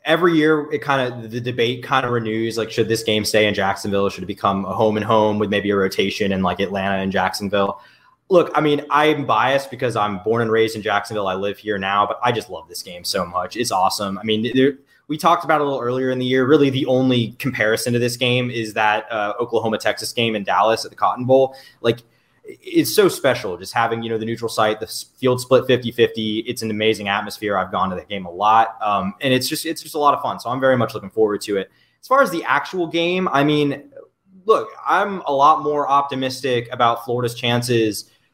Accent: American